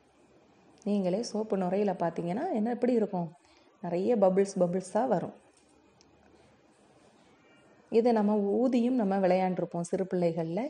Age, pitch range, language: 30-49, 180-235 Hz, Tamil